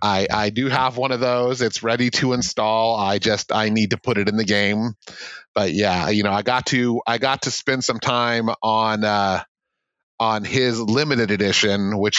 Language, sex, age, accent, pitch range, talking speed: English, male, 30-49, American, 100-115 Hz, 200 wpm